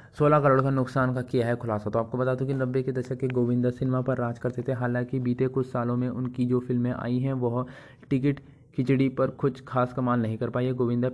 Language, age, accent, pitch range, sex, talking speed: Hindi, 20-39, native, 120-130 Hz, male, 245 wpm